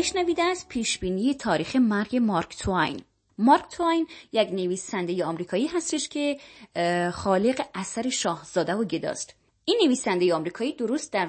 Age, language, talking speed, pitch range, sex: 20-39, Persian, 140 wpm, 180-295 Hz, female